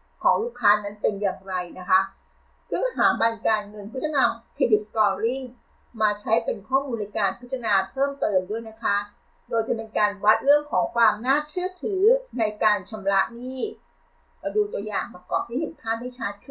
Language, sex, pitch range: Thai, female, 210-280 Hz